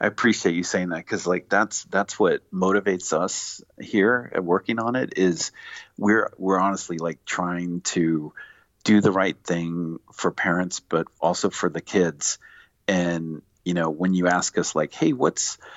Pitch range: 80-95 Hz